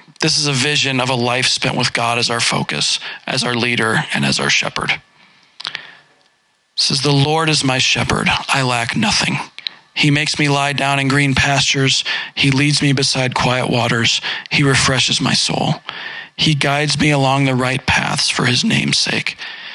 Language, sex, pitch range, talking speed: English, male, 130-145 Hz, 180 wpm